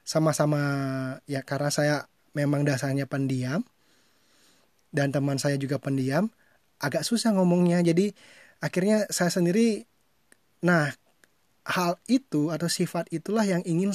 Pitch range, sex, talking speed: 140-175 Hz, male, 115 wpm